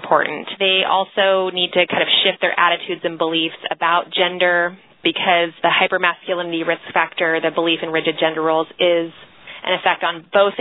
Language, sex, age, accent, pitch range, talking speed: English, female, 20-39, American, 165-190 Hz, 170 wpm